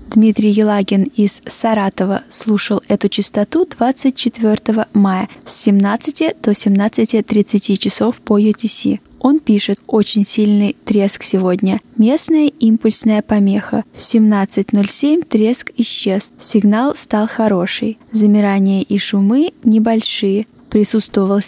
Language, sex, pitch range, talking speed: Russian, female, 205-240 Hz, 105 wpm